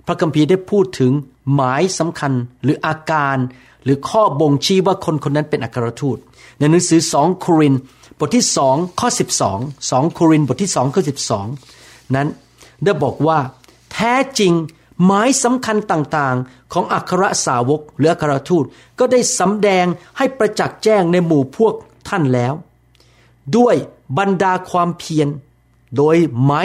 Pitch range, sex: 135-185 Hz, male